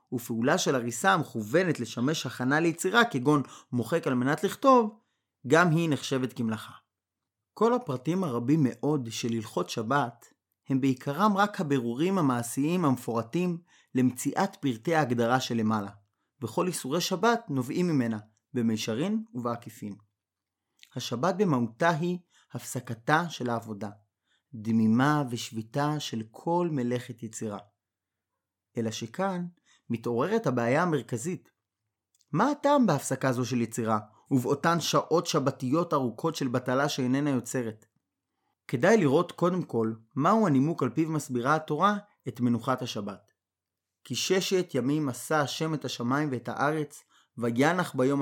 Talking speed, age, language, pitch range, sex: 120 wpm, 30-49, Hebrew, 115-160 Hz, male